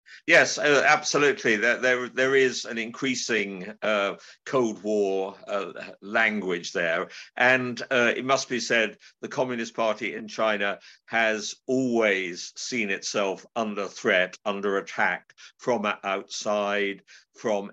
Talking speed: 120 wpm